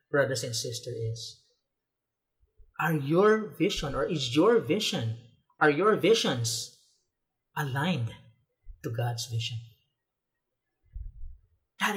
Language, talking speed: English, 95 wpm